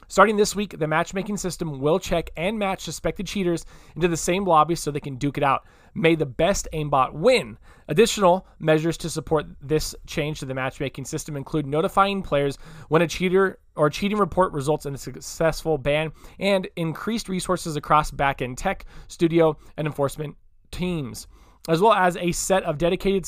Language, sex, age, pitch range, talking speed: English, male, 20-39, 145-180 Hz, 180 wpm